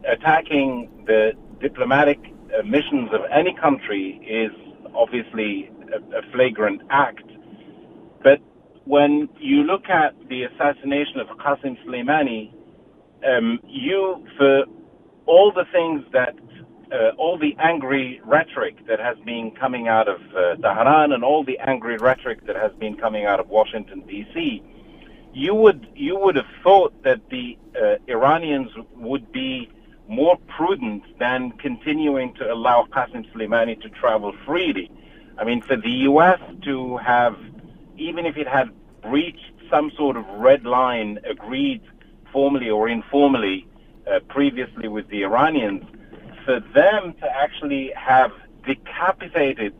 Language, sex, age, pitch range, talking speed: English, male, 50-69, 115-180 Hz, 135 wpm